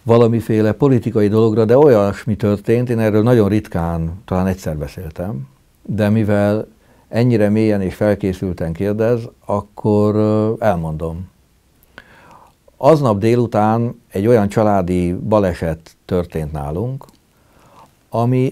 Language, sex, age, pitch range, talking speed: Hungarian, male, 60-79, 95-115 Hz, 100 wpm